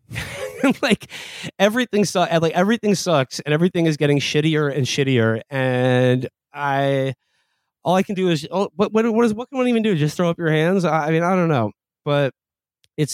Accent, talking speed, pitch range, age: American, 200 wpm, 135-190 Hz, 30-49